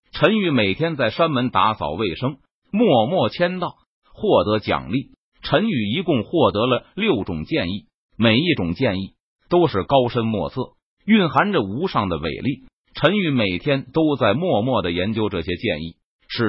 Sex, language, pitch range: male, Chinese, 115-180 Hz